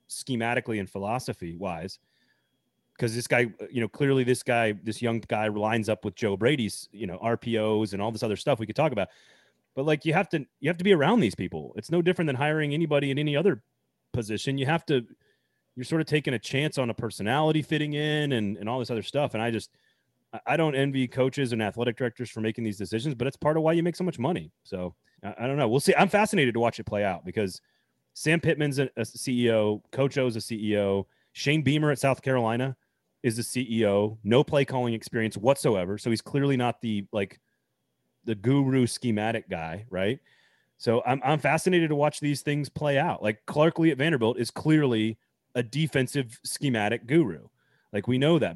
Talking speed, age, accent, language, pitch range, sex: 210 wpm, 30-49, American, English, 110-150 Hz, male